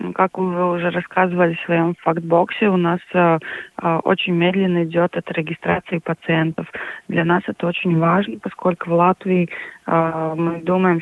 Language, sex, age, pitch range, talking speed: Russian, female, 20-39, 170-180 Hz, 150 wpm